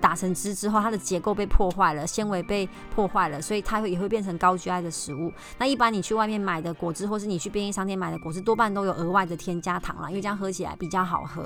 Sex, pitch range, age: male, 180-215 Hz, 30-49